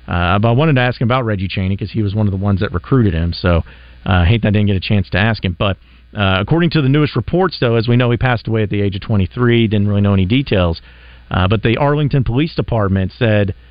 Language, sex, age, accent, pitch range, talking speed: English, male, 40-59, American, 90-125 Hz, 280 wpm